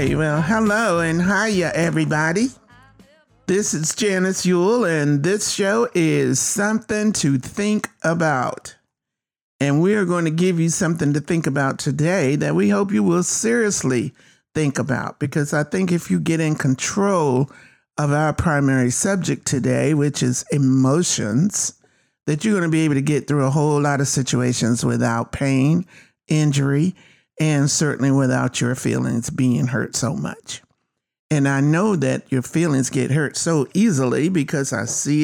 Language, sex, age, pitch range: English, male, 50-69, 135-180 Hz